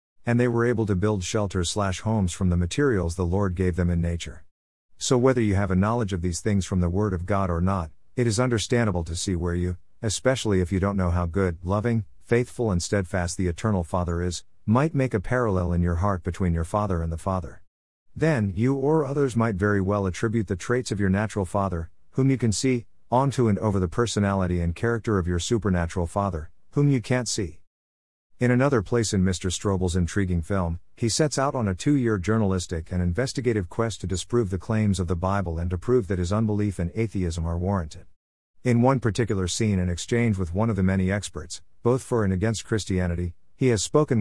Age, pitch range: 50-69, 90-115 Hz